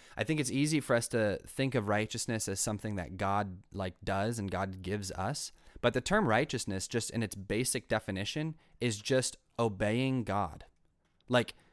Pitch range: 100-125 Hz